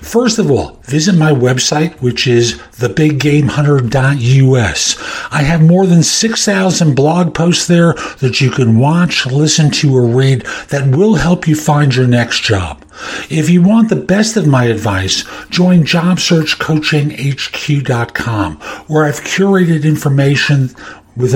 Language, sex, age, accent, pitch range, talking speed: English, male, 60-79, American, 125-175 Hz, 135 wpm